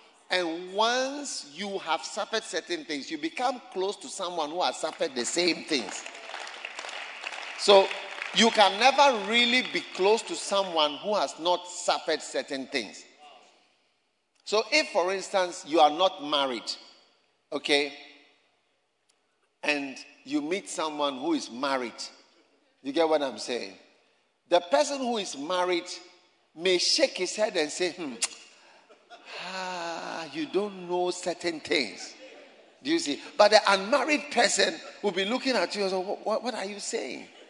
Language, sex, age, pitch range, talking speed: English, male, 50-69, 180-255 Hz, 145 wpm